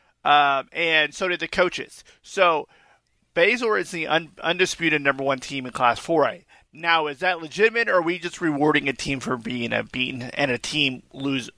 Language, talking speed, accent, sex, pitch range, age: English, 195 wpm, American, male, 140-180 Hz, 30-49